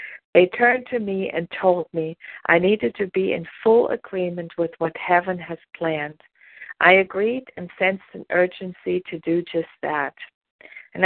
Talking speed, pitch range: 165 wpm, 170-205 Hz